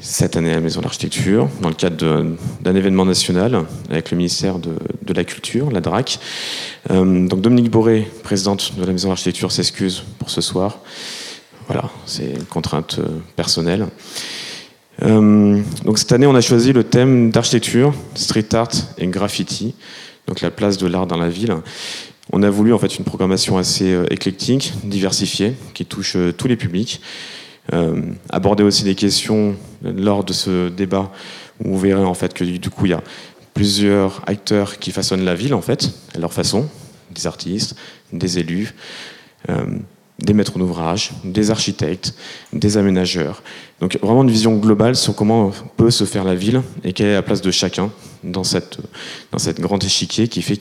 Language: French